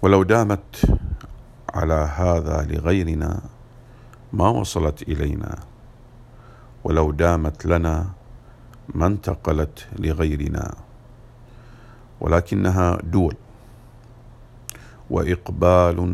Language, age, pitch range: English, 50-69, 85-120 Hz